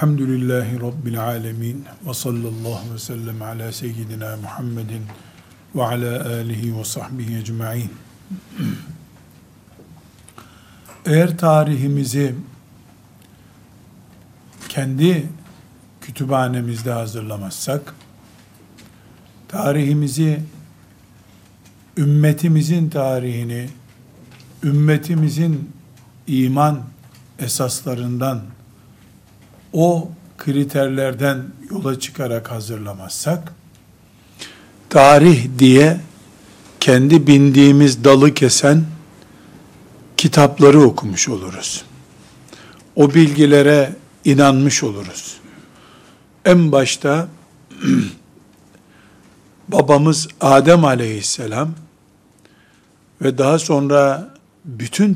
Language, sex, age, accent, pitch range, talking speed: Turkish, male, 50-69, native, 115-150 Hz, 55 wpm